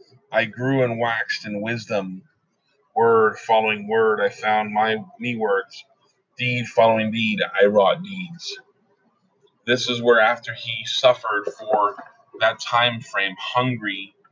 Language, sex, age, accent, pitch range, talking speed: English, male, 30-49, American, 110-135 Hz, 130 wpm